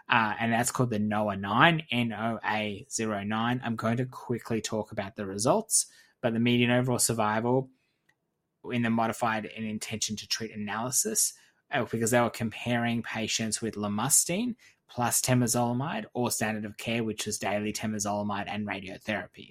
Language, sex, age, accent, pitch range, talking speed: English, male, 20-39, Australian, 105-120 Hz, 150 wpm